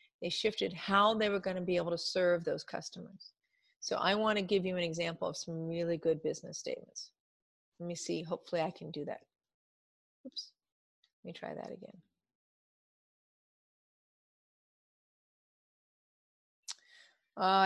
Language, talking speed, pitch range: English, 135 wpm, 170-210 Hz